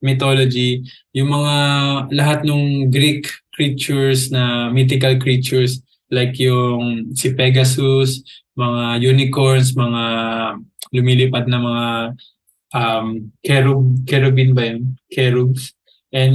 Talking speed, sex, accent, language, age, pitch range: 100 wpm, male, native, Filipino, 20-39, 125-140 Hz